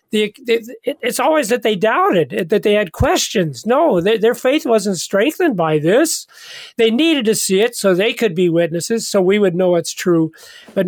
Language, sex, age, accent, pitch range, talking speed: English, male, 40-59, American, 165-210 Hz, 180 wpm